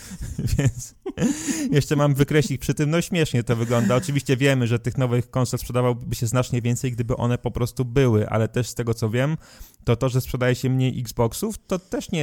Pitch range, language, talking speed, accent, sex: 110-130 Hz, Polish, 200 wpm, native, male